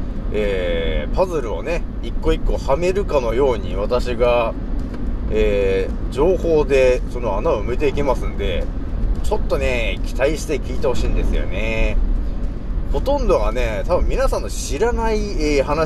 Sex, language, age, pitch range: male, Japanese, 40-59, 110-170 Hz